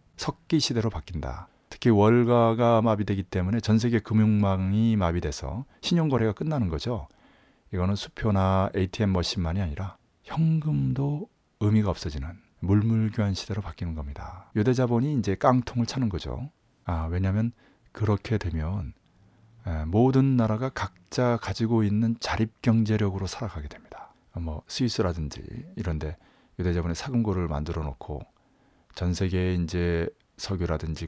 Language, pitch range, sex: Korean, 85-110 Hz, male